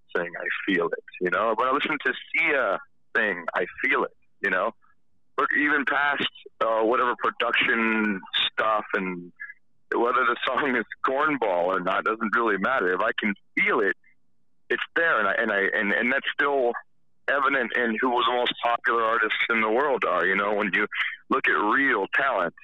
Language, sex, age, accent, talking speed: English, male, 40-59, American, 185 wpm